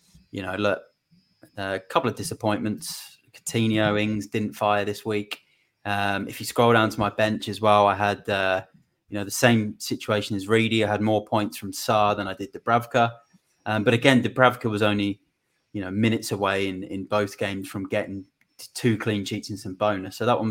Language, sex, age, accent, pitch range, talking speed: English, male, 20-39, British, 100-115 Hz, 200 wpm